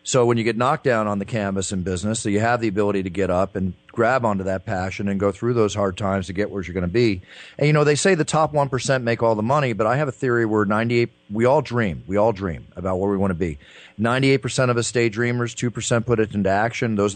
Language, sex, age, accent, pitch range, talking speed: English, male, 40-59, American, 100-130 Hz, 275 wpm